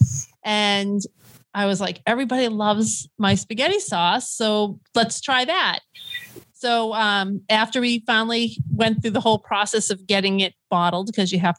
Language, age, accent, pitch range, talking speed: English, 30-49, American, 195-230 Hz, 155 wpm